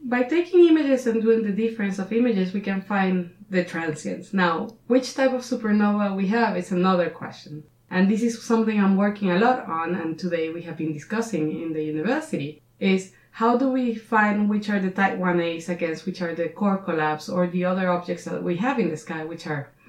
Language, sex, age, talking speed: English, female, 20-39, 210 wpm